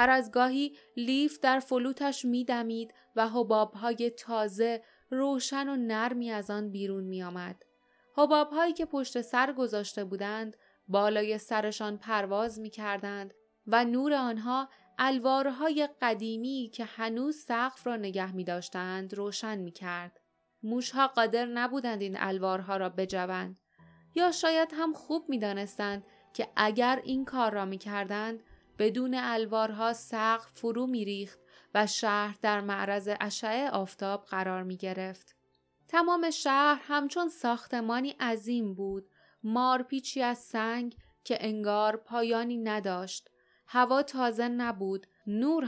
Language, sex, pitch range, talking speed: Persian, female, 205-255 Hz, 120 wpm